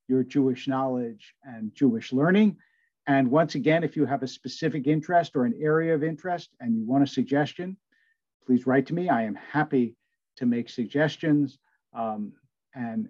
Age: 50-69